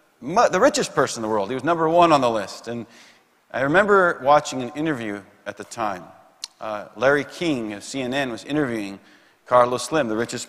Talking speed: 190 wpm